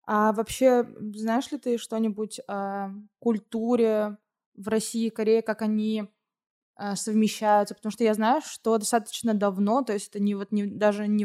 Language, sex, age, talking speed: Russian, female, 20-39, 160 wpm